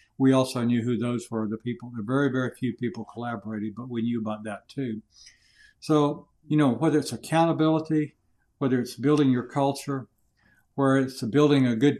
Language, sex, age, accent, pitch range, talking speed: English, male, 60-79, American, 115-140 Hz, 185 wpm